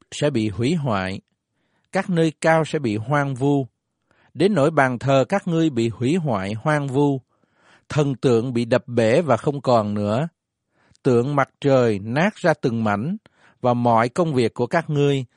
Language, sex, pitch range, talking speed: Vietnamese, male, 115-155 Hz, 175 wpm